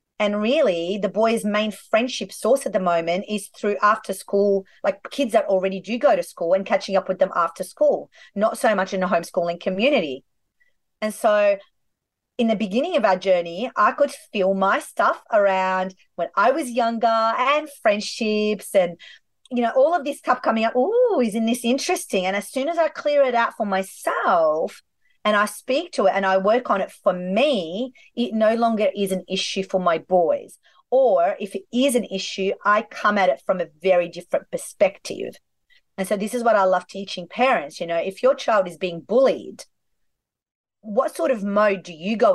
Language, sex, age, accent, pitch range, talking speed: English, female, 30-49, Australian, 190-260 Hz, 195 wpm